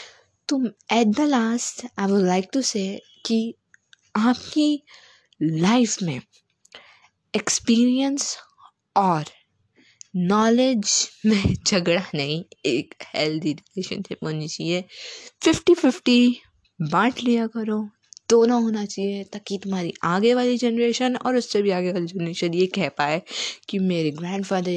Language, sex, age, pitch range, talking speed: Hindi, female, 20-39, 165-220 Hz, 120 wpm